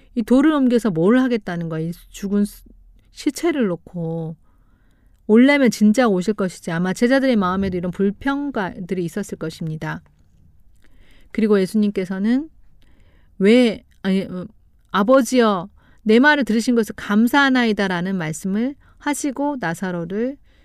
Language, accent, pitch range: Korean, native, 180-255 Hz